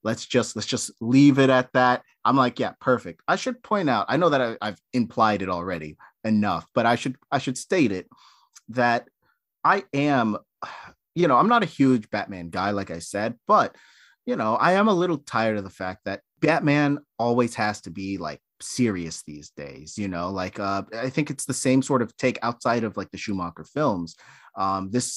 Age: 30-49